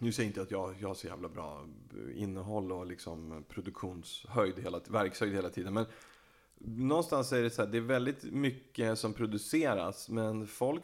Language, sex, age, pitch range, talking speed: Swedish, male, 30-49, 100-120 Hz, 175 wpm